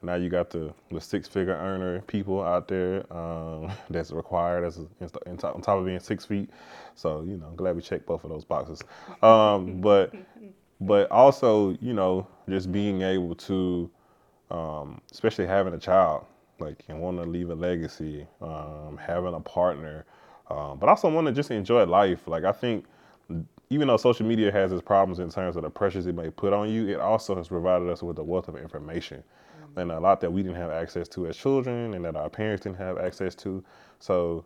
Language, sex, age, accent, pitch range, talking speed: English, male, 20-39, American, 80-95 Hz, 205 wpm